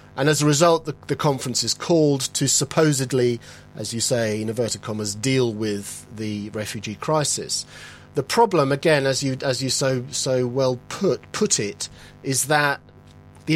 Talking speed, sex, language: 170 wpm, male, English